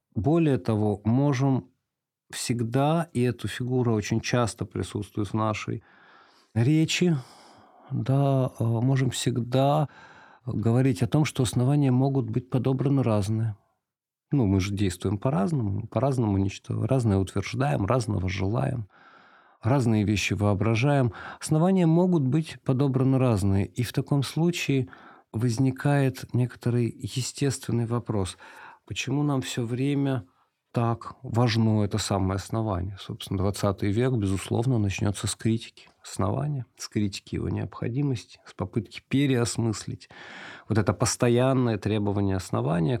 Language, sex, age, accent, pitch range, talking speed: Russian, male, 50-69, native, 105-130 Hz, 115 wpm